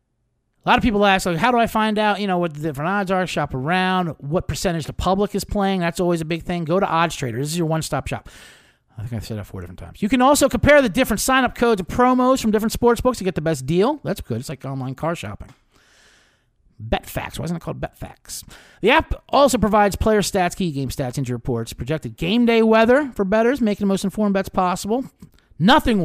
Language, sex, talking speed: English, male, 245 wpm